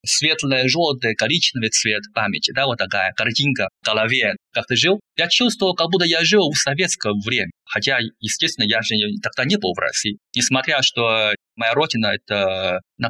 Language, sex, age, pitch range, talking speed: Russian, male, 20-39, 110-140 Hz, 180 wpm